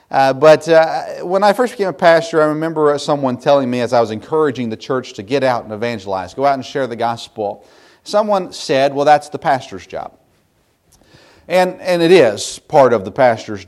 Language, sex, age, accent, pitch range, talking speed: English, male, 40-59, American, 115-175 Hz, 200 wpm